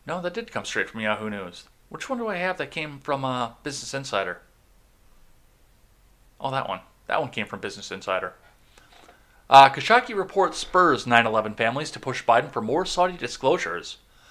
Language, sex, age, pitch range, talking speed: English, male, 30-49, 115-170 Hz, 170 wpm